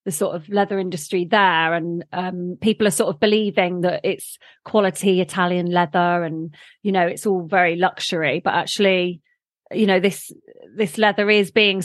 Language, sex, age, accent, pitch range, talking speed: English, female, 30-49, British, 175-210 Hz, 170 wpm